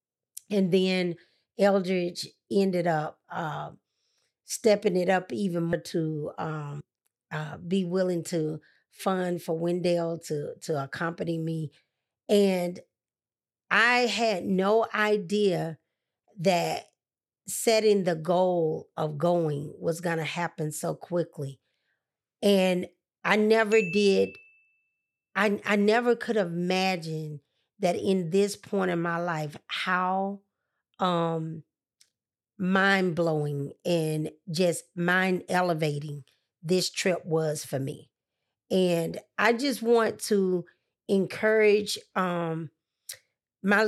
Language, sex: English, female